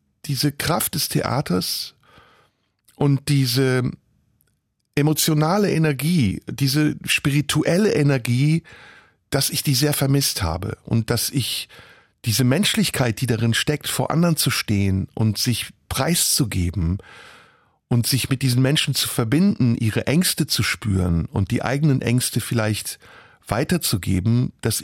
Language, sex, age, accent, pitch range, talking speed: German, male, 50-69, German, 115-160 Hz, 120 wpm